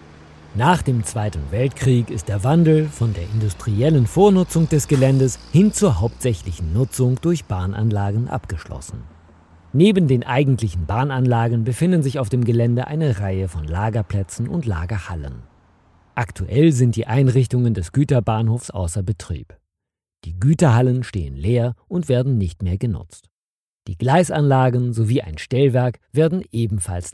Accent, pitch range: German, 100-130 Hz